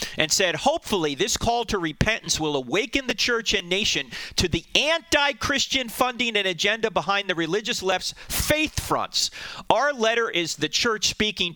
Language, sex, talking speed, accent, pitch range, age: English, male, 160 wpm, American, 145-220 Hz, 40-59